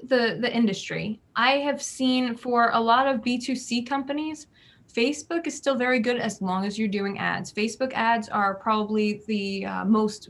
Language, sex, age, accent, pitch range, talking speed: English, female, 20-39, American, 195-245 Hz, 175 wpm